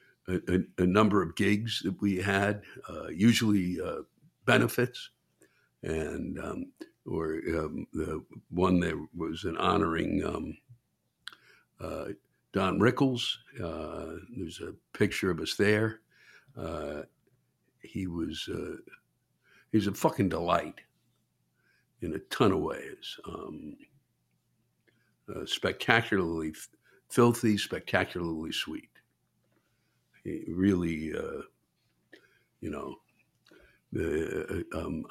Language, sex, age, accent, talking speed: English, male, 60-79, American, 105 wpm